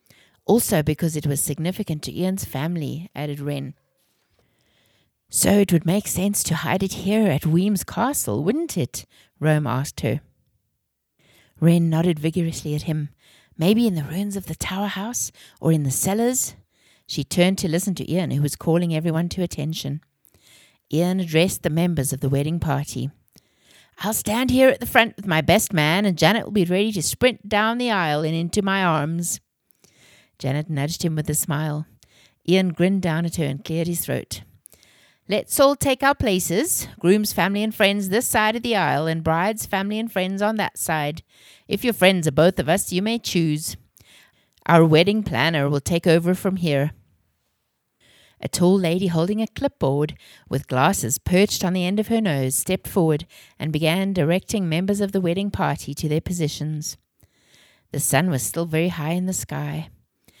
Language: English